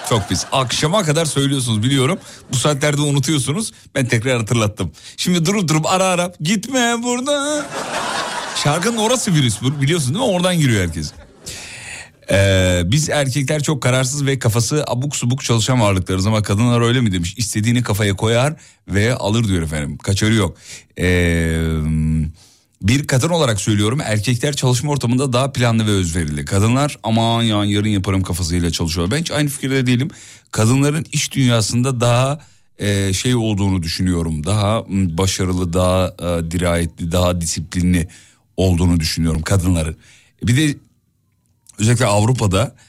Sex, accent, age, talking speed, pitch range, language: male, native, 40-59, 140 wpm, 95-135 Hz, Turkish